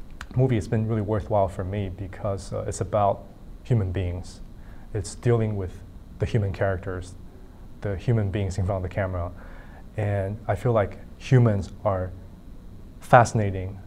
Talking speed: 145 wpm